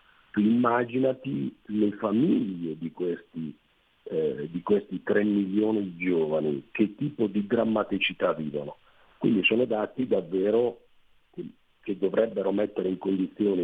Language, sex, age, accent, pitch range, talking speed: Italian, male, 50-69, native, 90-115 Hz, 120 wpm